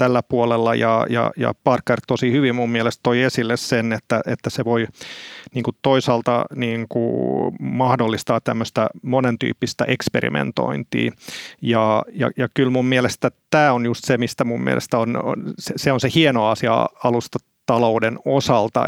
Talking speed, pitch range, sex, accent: 150 wpm, 115-135 Hz, male, native